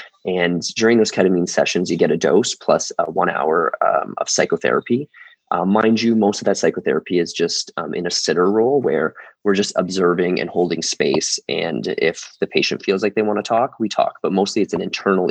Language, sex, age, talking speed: English, male, 20-39, 210 wpm